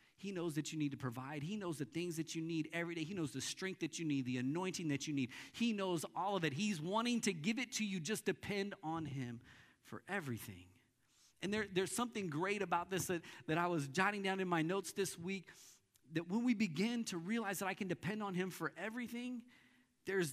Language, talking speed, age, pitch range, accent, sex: English, 230 wpm, 40-59, 140-200 Hz, American, male